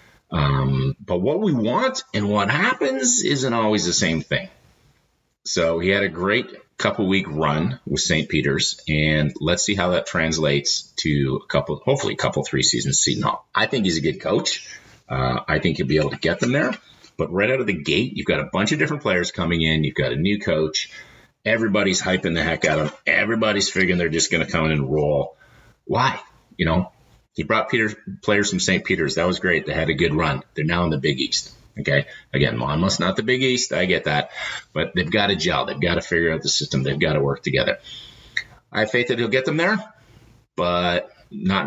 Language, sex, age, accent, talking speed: English, male, 40-59, American, 215 wpm